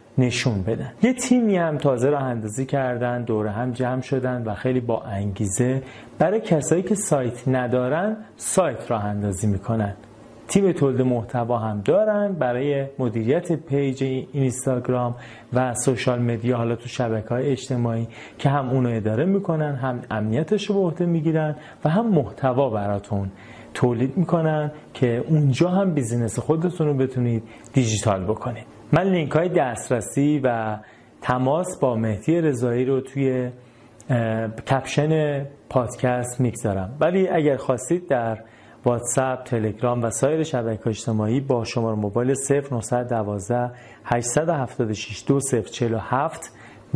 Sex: male